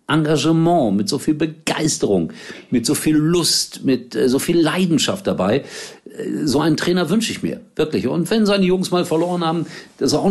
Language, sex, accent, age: German, male, German, 50-69